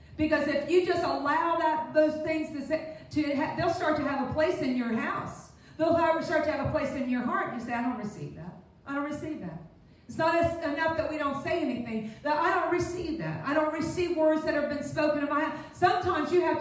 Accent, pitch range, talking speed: American, 290-330 Hz, 250 wpm